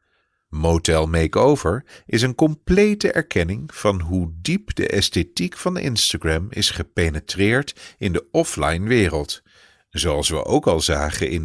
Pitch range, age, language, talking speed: 80-110 Hz, 50-69, English, 130 wpm